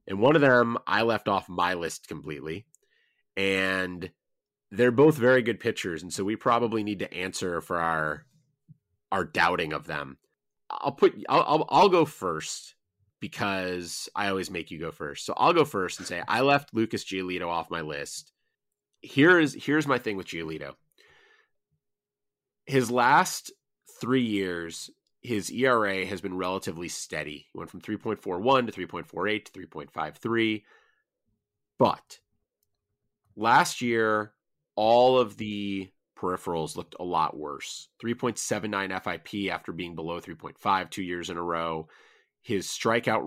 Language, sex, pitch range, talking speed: English, male, 90-115 Hz, 145 wpm